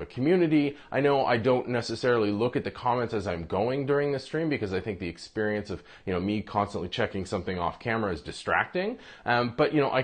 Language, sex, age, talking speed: English, male, 20-39, 225 wpm